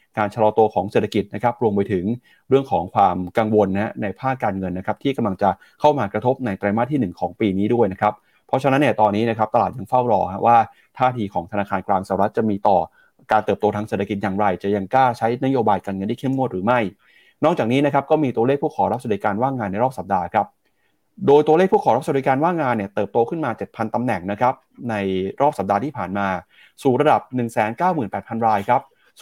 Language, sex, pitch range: Thai, male, 100-130 Hz